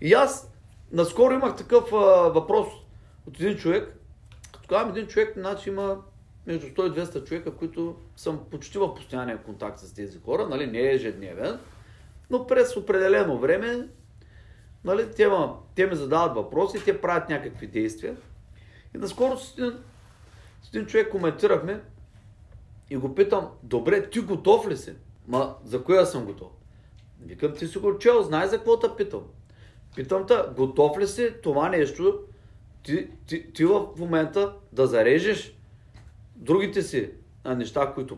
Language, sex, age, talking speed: Bulgarian, male, 40-59, 150 wpm